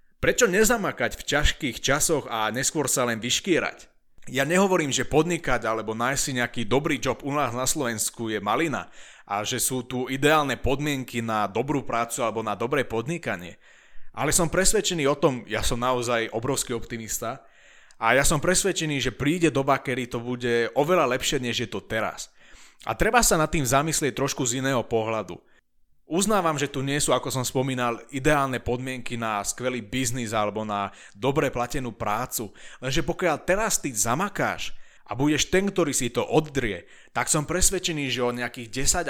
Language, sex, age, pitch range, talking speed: Slovak, male, 30-49, 120-150 Hz, 170 wpm